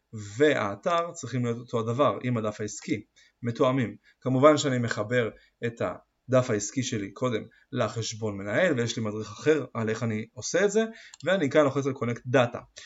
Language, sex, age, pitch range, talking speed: Hebrew, male, 30-49, 115-150 Hz, 165 wpm